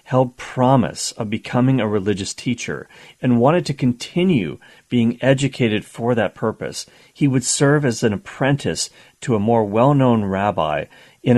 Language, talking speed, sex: English, 150 wpm, male